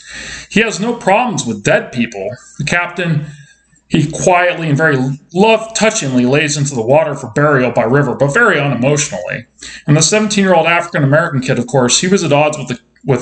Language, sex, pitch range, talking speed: English, male, 130-180 Hz, 175 wpm